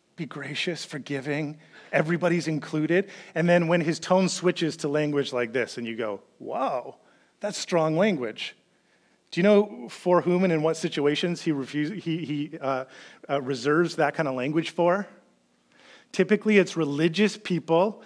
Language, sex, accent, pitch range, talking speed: English, male, American, 165-225 Hz, 155 wpm